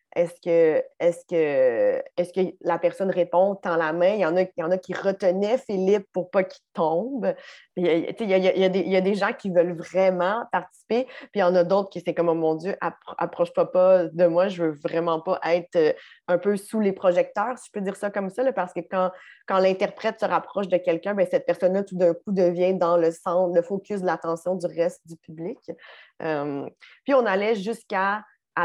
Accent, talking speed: Canadian, 210 wpm